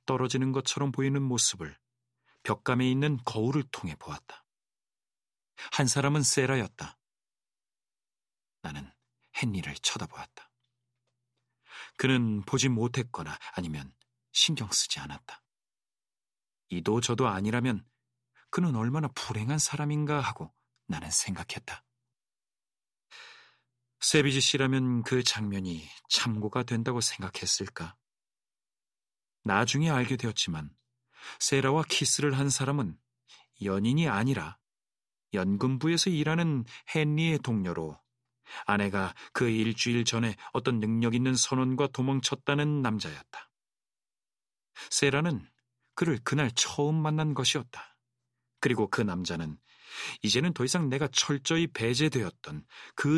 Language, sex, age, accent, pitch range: Korean, male, 40-59, native, 115-140 Hz